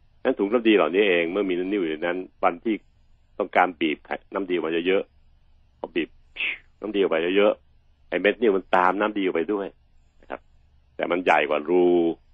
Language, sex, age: Thai, male, 60-79